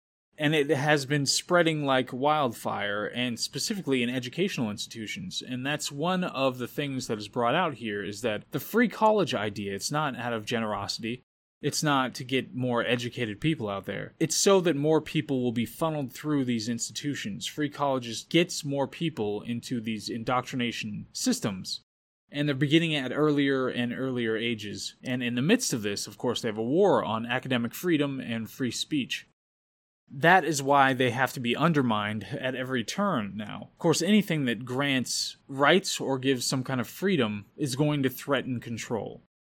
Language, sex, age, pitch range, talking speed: English, male, 20-39, 120-150 Hz, 180 wpm